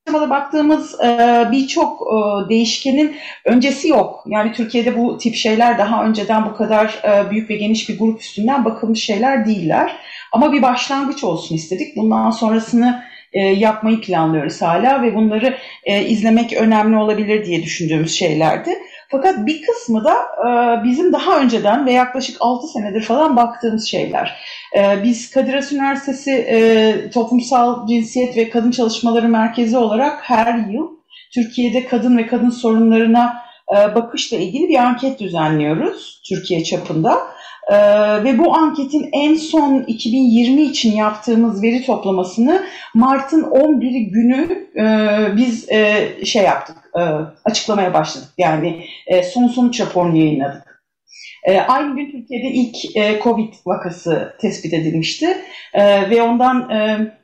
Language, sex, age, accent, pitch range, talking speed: Turkish, female, 40-59, native, 215-260 Hz, 130 wpm